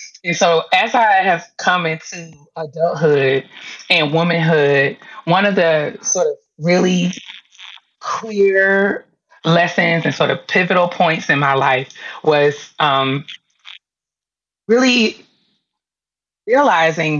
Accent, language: American, English